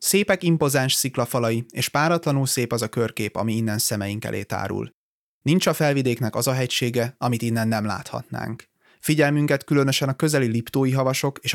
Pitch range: 115-135 Hz